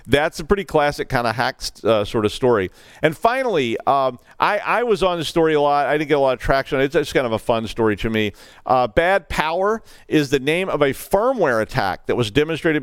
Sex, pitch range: male, 120-160 Hz